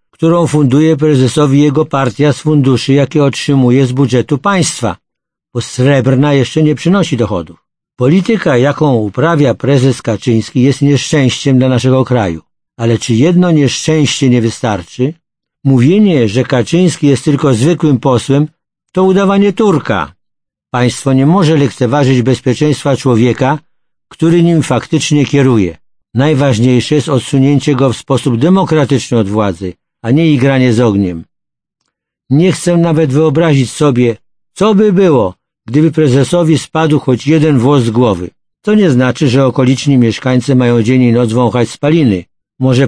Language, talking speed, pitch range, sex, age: Polish, 135 wpm, 125-155 Hz, male, 50-69